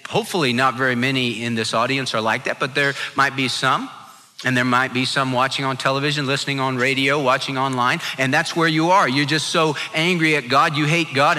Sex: male